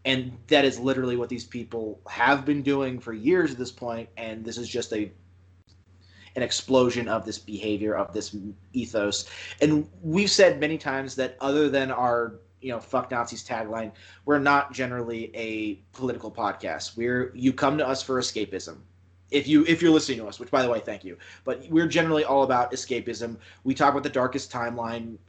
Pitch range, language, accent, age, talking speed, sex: 105-130 Hz, English, American, 30-49, 190 wpm, male